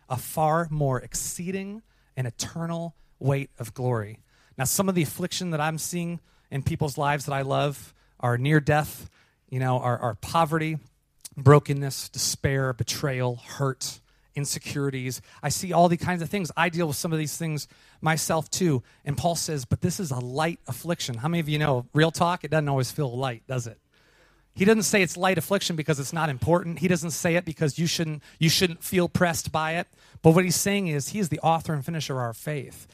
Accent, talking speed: American, 205 wpm